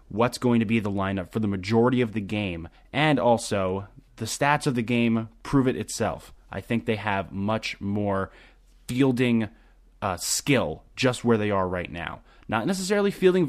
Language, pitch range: English, 95-120 Hz